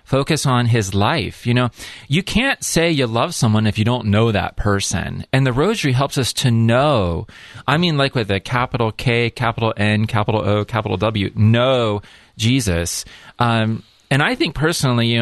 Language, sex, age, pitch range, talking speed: English, male, 30-49, 100-125 Hz, 180 wpm